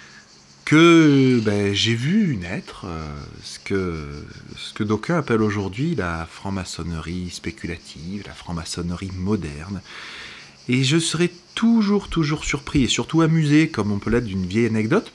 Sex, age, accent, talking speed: male, 30-49, French, 140 wpm